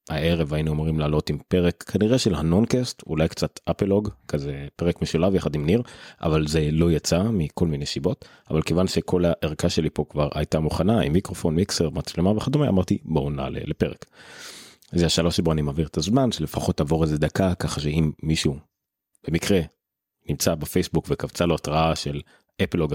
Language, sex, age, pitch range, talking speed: Hebrew, male, 30-49, 75-95 Hz, 170 wpm